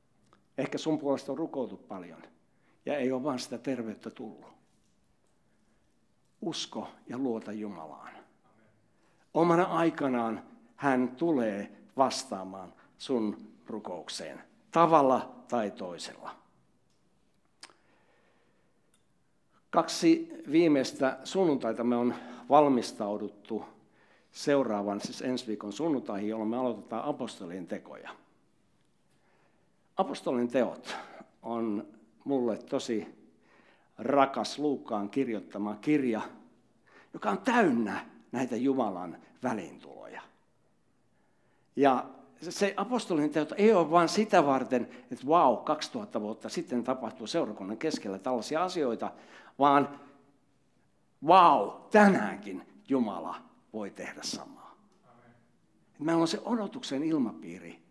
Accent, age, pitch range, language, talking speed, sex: native, 60-79, 115-170 Hz, Finnish, 95 wpm, male